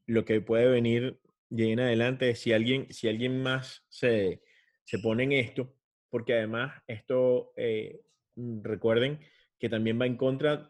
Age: 30-49